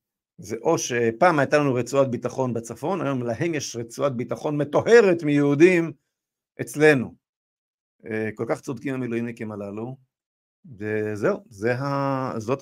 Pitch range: 110-140 Hz